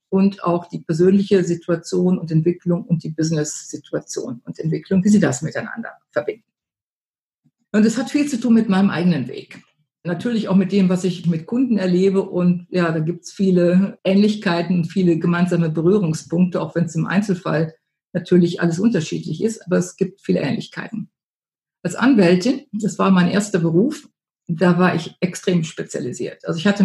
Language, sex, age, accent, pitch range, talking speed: German, female, 50-69, German, 170-205 Hz, 170 wpm